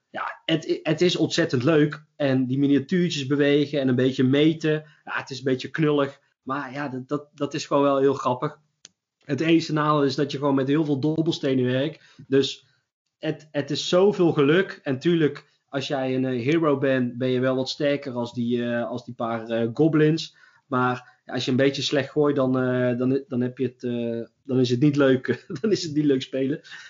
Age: 20-39